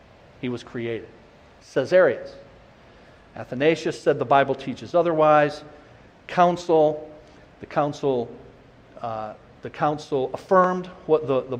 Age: 50-69